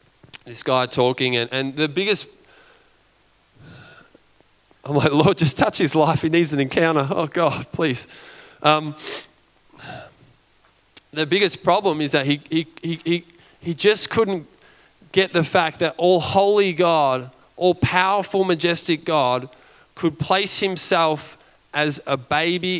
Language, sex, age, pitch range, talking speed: English, male, 20-39, 140-180 Hz, 135 wpm